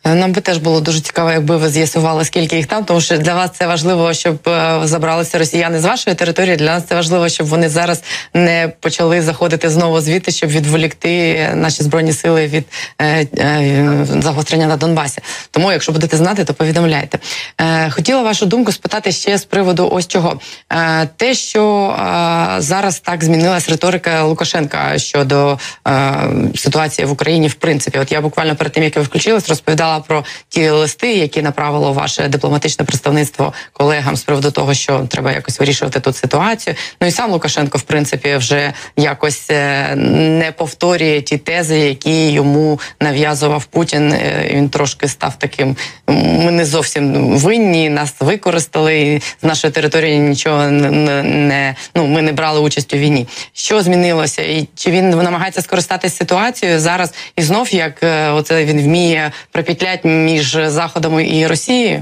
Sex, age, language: female, 20-39, Ukrainian